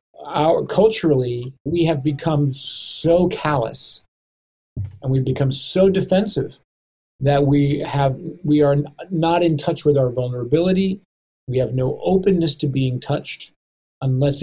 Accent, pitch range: American, 130-170 Hz